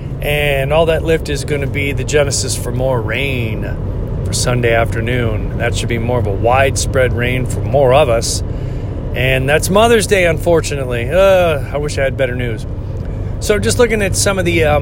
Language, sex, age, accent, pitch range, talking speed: English, male, 40-59, American, 110-135 Hz, 195 wpm